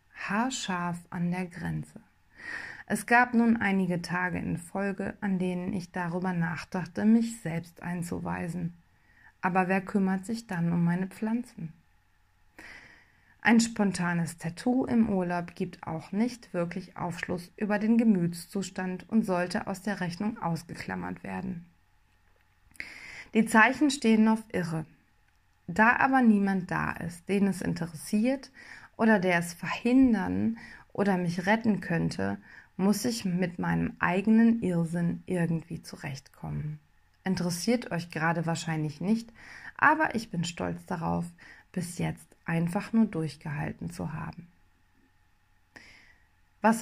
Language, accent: German, German